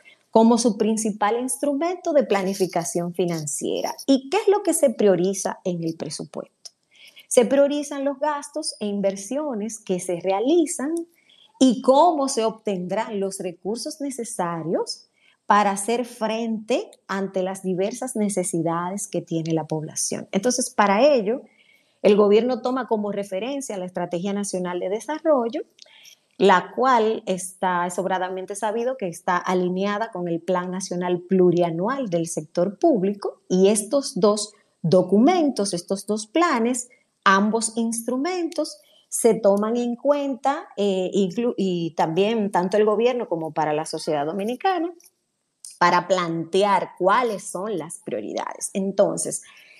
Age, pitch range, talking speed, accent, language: 30-49, 185-260 Hz, 125 wpm, American, Spanish